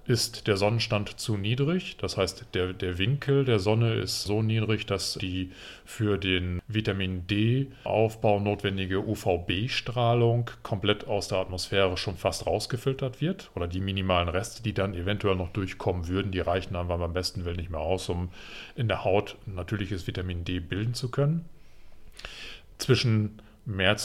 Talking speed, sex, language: 150 wpm, male, German